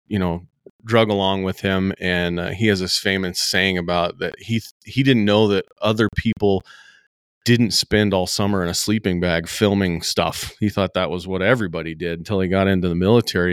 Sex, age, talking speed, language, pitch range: male, 30-49, 205 wpm, English, 90-105 Hz